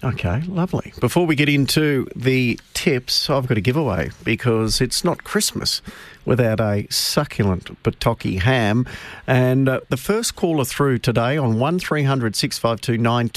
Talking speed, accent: 160 wpm, Australian